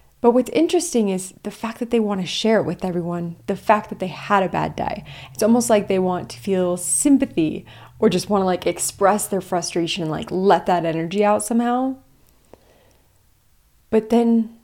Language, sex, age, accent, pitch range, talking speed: English, female, 30-49, American, 185-225 Hz, 195 wpm